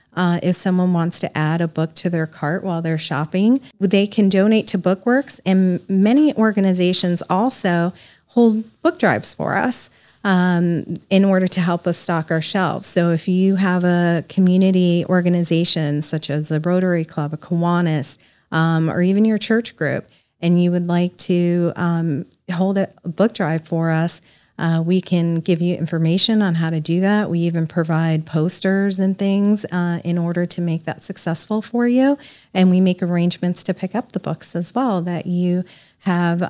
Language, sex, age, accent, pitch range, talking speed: English, female, 30-49, American, 170-190 Hz, 180 wpm